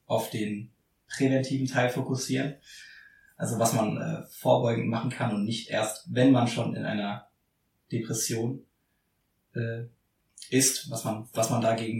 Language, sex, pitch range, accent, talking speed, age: German, male, 110-130 Hz, German, 140 wpm, 20-39